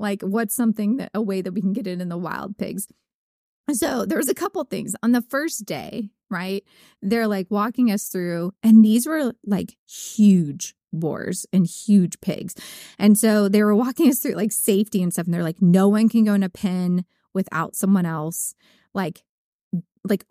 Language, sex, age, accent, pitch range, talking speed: English, female, 20-39, American, 190-250 Hz, 195 wpm